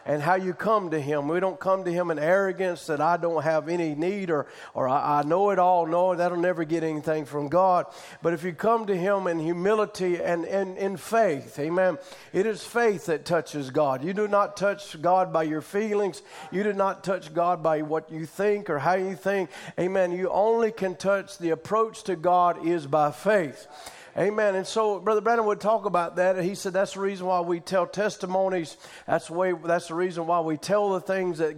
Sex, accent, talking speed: male, American, 215 wpm